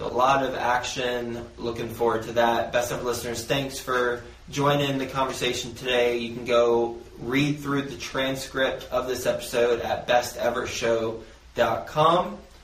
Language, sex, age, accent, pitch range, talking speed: English, male, 20-39, American, 115-130 Hz, 140 wpm